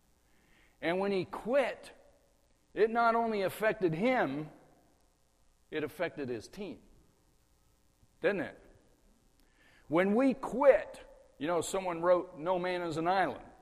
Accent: American